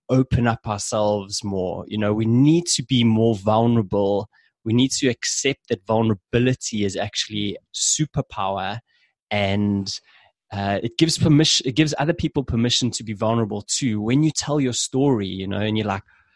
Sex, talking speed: male, 165 wpm